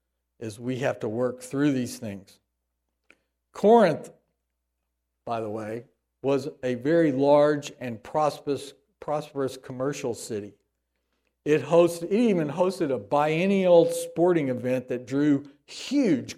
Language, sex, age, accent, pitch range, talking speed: English, male, 60-79, American, 125-170 Hz, 115 wpm